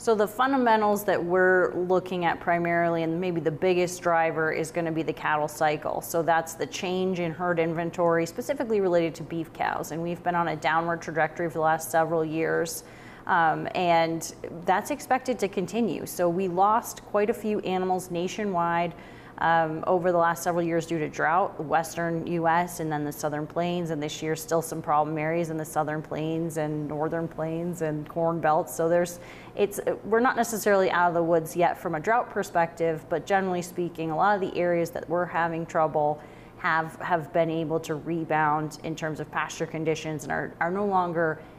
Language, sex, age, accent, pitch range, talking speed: English, female, 30-49, American, 160-180 Hz, 195 wpm